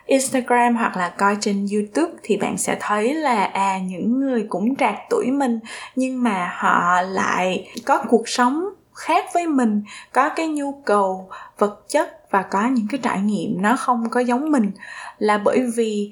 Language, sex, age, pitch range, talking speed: Vietnamese, female, 20-39, 205-270 Hz, 180 wpm